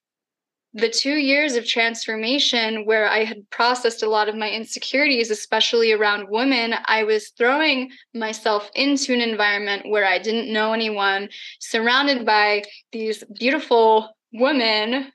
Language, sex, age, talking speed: English, female, 10-29, 135 wpm